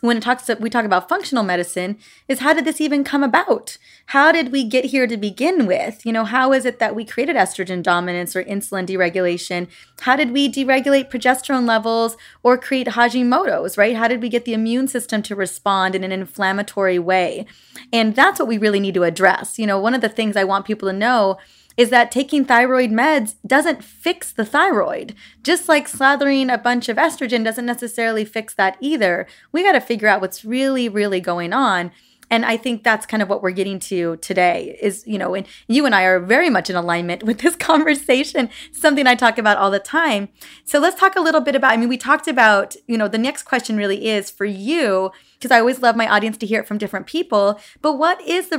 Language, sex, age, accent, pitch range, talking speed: English, female, 20-39, American, 195-260 Hz, 220 wpm